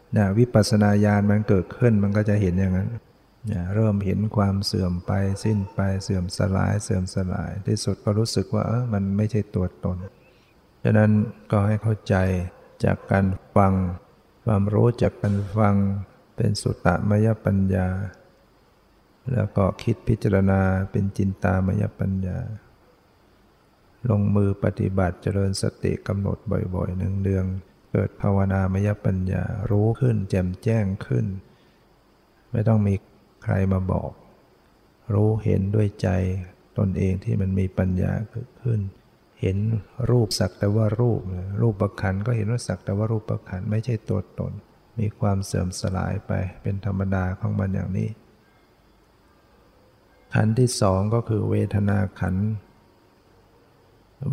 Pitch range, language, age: 95-110 Hz, Thai, 60-79